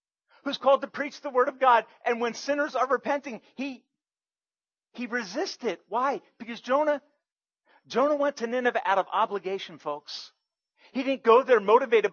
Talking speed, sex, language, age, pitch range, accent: 160 wpm, male, English, 40-59, 210-270 Hz, American